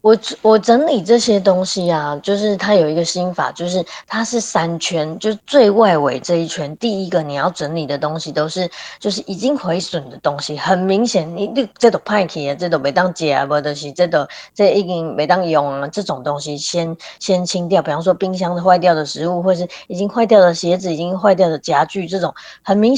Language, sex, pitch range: Chinese, female, 160-200 Hz